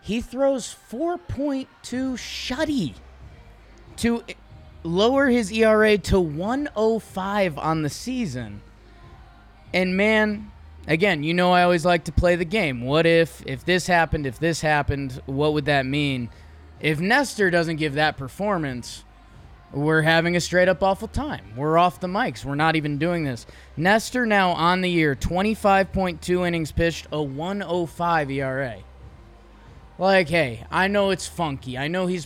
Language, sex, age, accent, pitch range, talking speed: English, male, 20-39, American, 145-195 Hz, 145 wpm